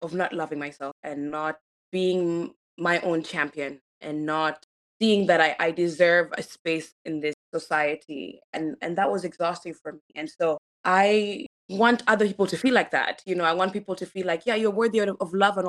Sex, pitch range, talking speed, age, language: female, 150-190 Hz, 205 wpm, 20-39, English